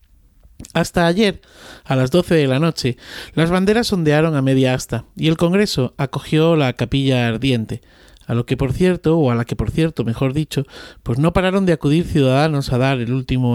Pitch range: 120-155 Hz